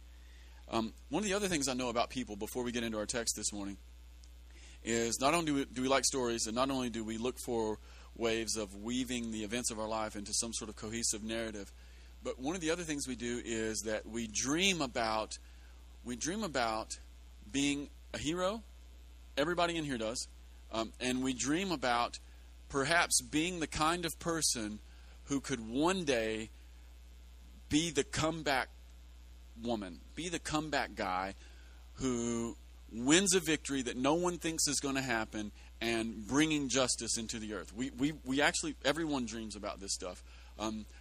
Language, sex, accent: English, male, American